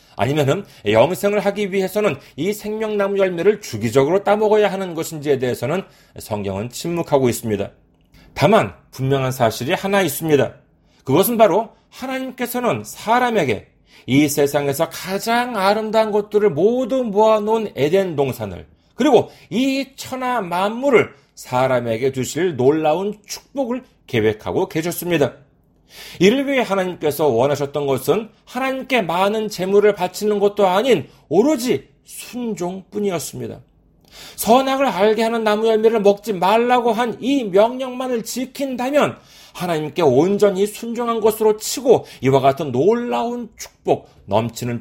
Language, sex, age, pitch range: Korean, male, 40-59, 140-220 Hz